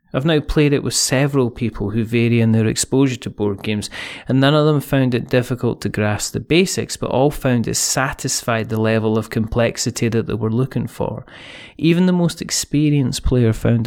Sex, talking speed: male, 200 wpm